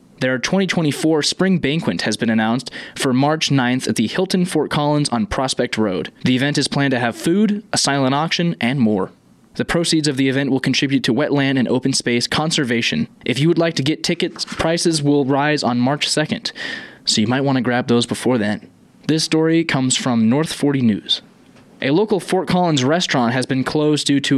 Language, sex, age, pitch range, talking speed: English, male, 20-39, 130-160 Hz, 200 wpm